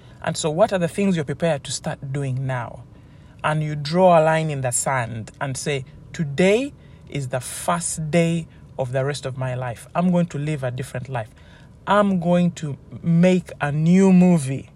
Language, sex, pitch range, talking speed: English, male, 135-180 Hz, 190 wpm